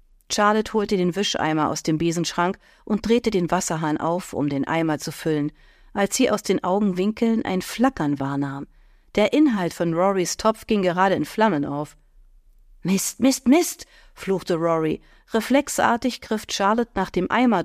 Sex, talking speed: female, 155 wpm